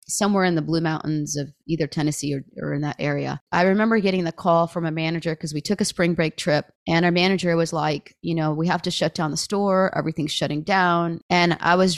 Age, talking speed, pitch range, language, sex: 30-49, 240 wpm, 155-190 Hz, English, female